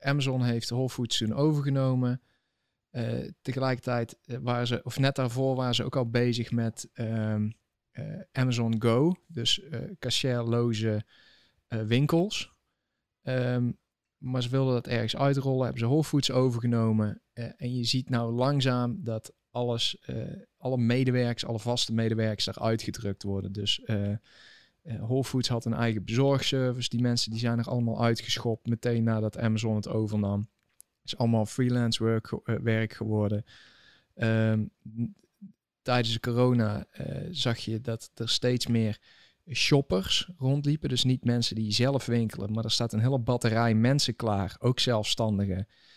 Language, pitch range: Dutch, 110-130 Hz